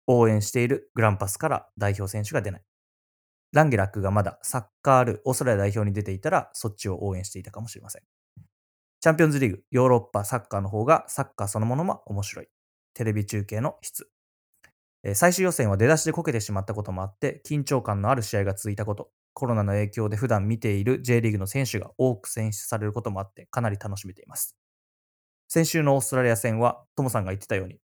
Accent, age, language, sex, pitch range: Japanese, 20-39, English, male, 100-125 Hz